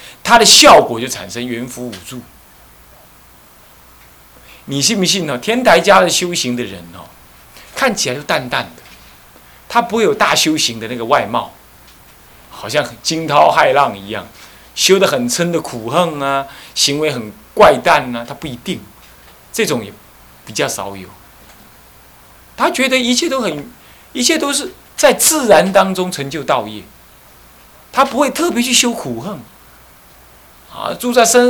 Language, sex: Chinese, male